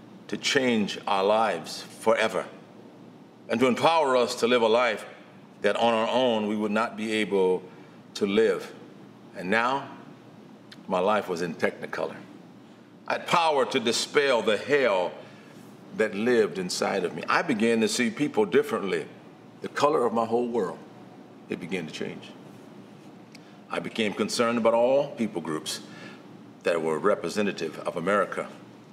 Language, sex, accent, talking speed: English, male, American, 145 wpm